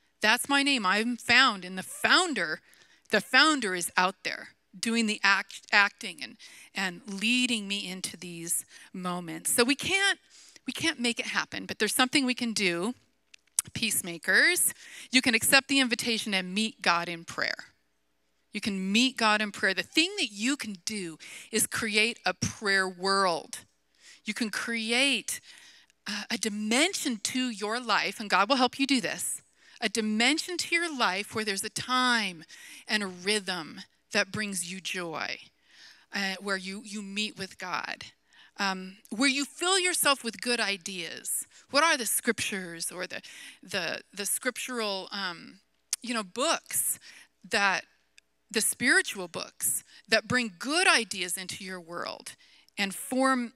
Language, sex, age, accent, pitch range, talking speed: English, female, 40-59, American, 190-250 Hz, 155 wpm